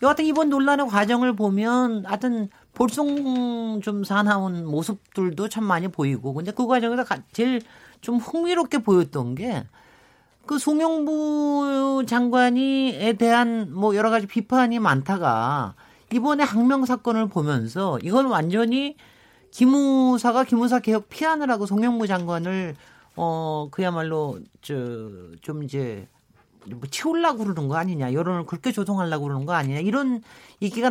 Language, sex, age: Korean, male, 40-59